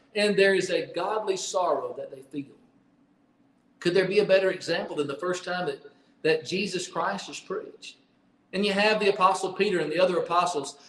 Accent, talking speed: American, 195 wpm